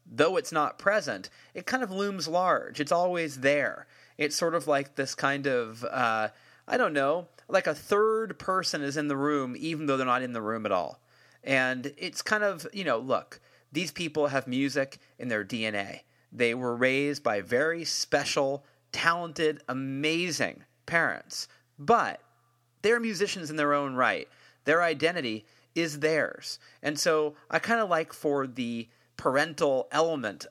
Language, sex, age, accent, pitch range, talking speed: English, male, 30-49, American, 130-170 Hz, 165 wpm